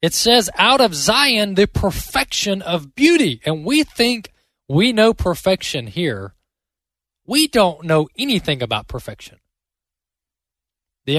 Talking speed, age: 125 wpm, 20-39